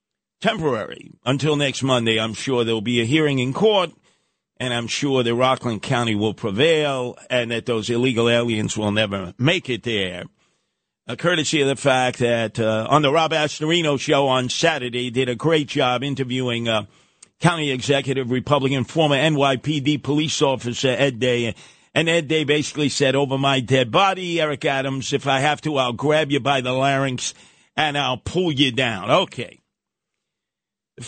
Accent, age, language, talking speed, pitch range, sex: American, 50-69, English, 170 wpm, 120-150 Hz, male